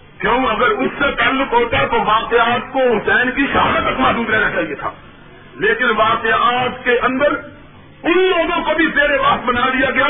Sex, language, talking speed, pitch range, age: male, Urdu, 165 wpm, 215-275 Hz, 50-69